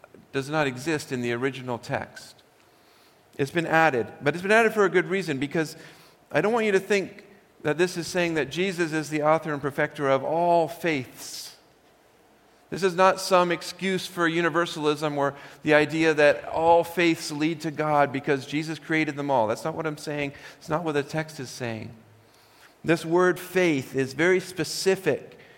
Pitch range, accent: 135-170 Hz, American